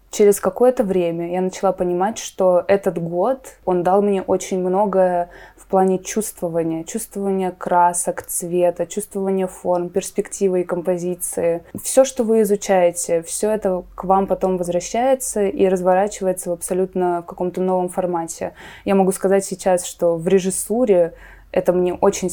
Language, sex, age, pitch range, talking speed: Russian, female, 20-39, 175-195 Hz, 140 wpm